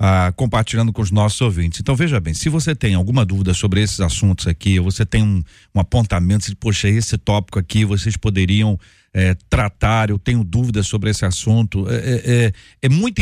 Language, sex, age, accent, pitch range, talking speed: Portuguese, male, 50-69, Brazilian, 110-150 Hz, 180 wpm